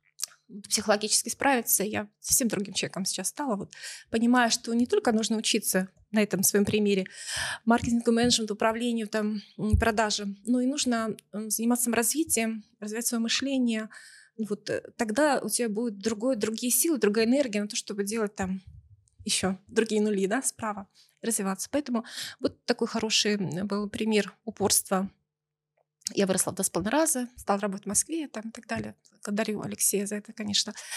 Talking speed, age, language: 145 wpm, 20-39, Russian